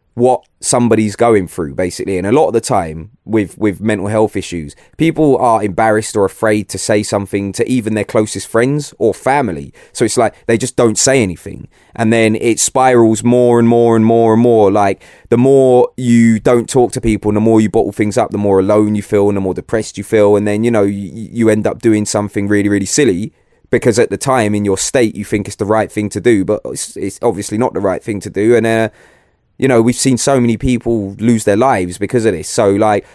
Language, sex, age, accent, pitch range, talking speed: English, male, 20-39, British, 100-115 Hz, 235 wpm